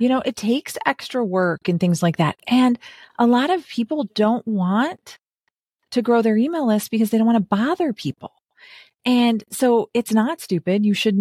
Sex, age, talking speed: female, 30-49, 195 wpm